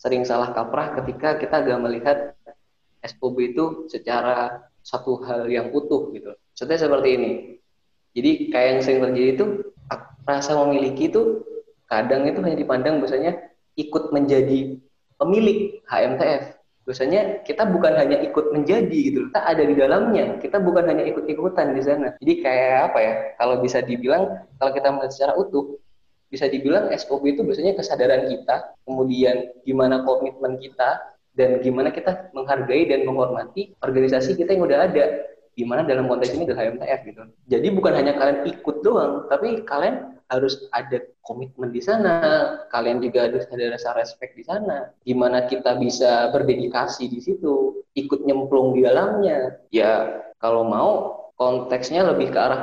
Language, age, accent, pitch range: Indonesian, 20-39, native, 125-175 Hz